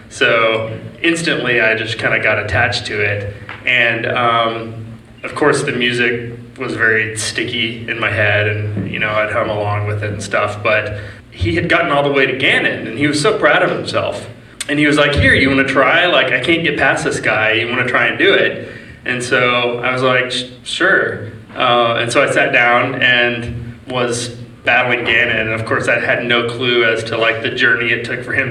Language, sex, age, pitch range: English, male, 20-39, 115-130 Hz